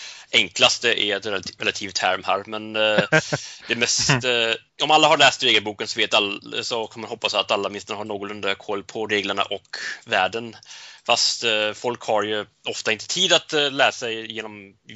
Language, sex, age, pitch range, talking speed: Swedish, male, 30-49, 105-125 Hz, 190 wpm